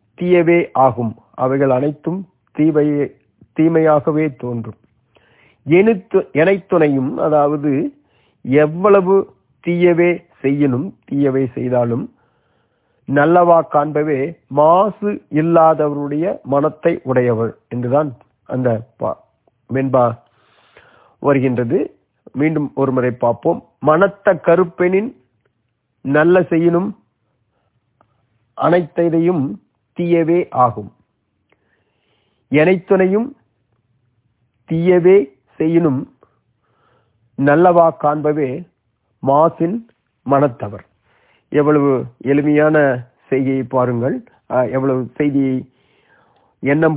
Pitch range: 125-170 Hz